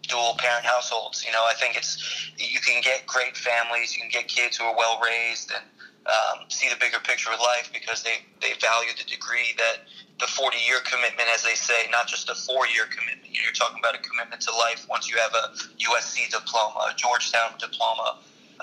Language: English